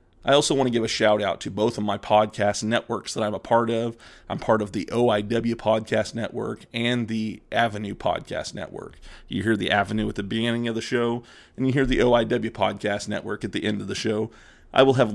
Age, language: 30-49, English